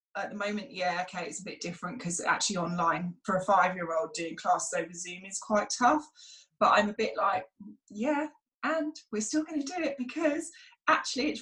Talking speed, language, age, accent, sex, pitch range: 195 wpm, English, 20-39, British, female, 185-255 Hz